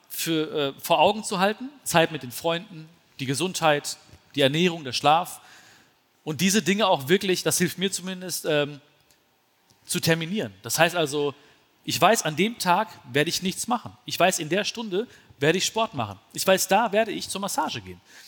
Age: 40-59